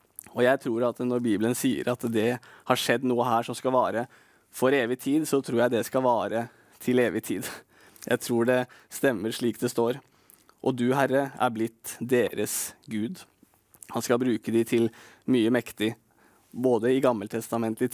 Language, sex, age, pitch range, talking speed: English, male, 20-39, 115-130 Hz, 180 wpm